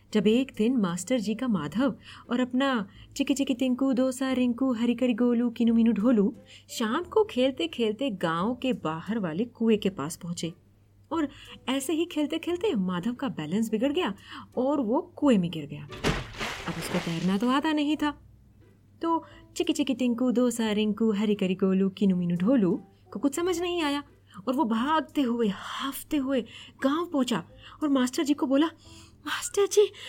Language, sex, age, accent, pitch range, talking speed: Hindi, female, 20-39, native, 195-295 Hz, 165 wpm